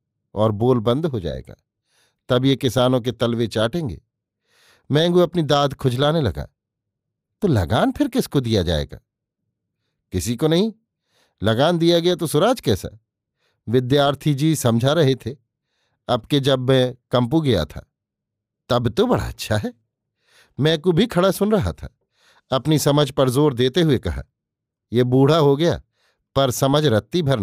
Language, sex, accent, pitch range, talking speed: Hindi, male, native, 120-160 Hz, 150 wpm